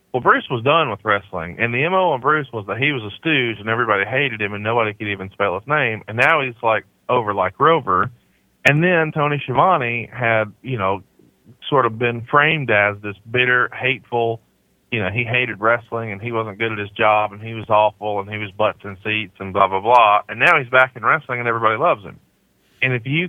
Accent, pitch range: American, 105-130 Hz